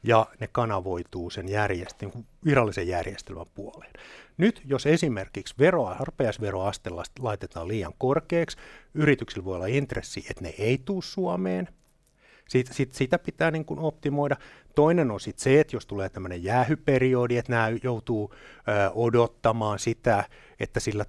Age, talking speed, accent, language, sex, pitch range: 60-79, 140 wpm, native, Finnish, male, 105-135 Hz